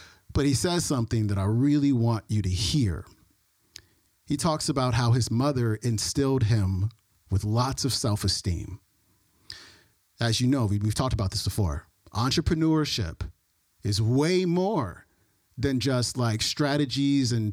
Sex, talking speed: male, 135 wpm